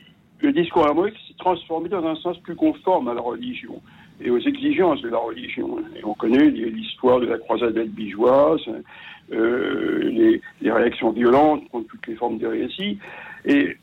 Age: 60-79